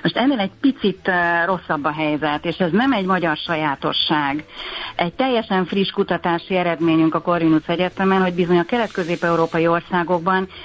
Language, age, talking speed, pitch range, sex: Hungarian, 40-59, 145 wpm, 170-210 Hz, female